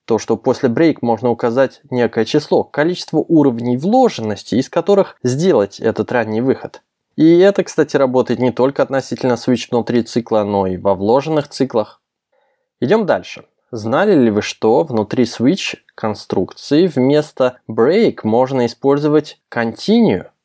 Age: 20-39